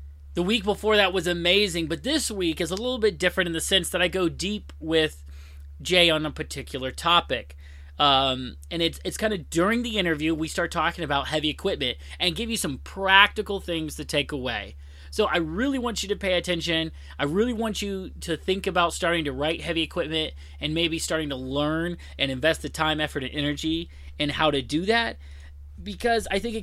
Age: 30-49